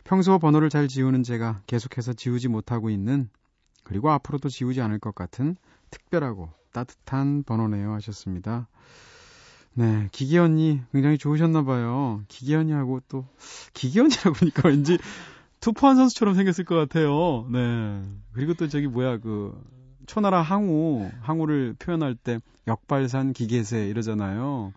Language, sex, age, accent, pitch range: Korean, male, 30-49, native, 115-155 Hz